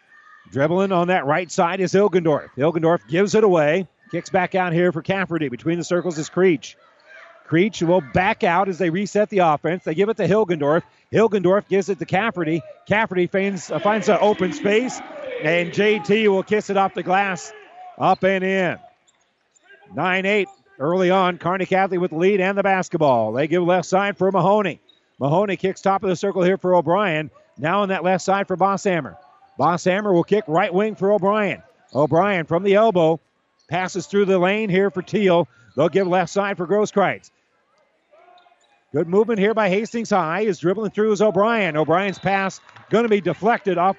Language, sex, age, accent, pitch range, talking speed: English, male, 40-59, American, 175-210 Hz, 185 wpm